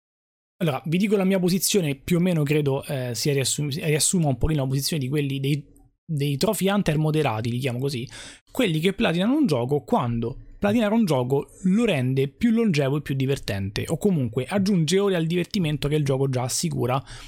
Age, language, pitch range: 20-39, Italian, 125-170 Hz